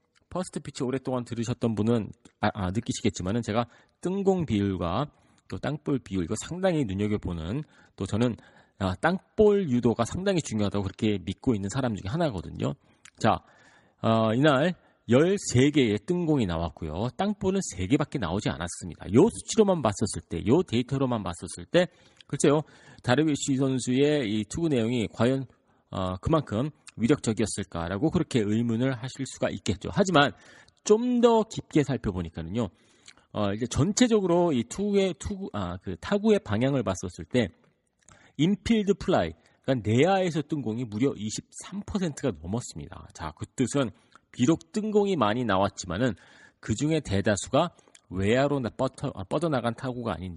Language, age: Korean, 40-59